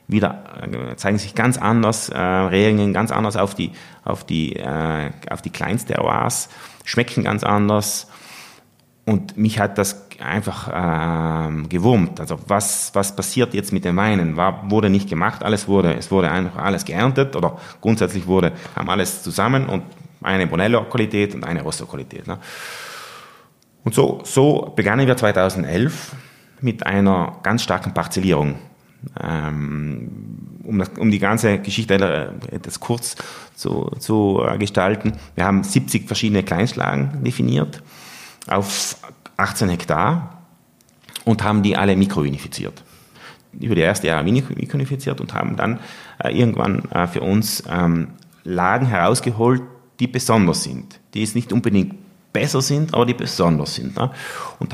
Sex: male